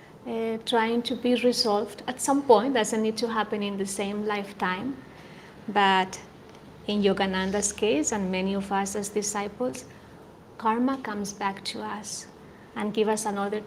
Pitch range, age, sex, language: 205-245 Hz, 30-49, female, English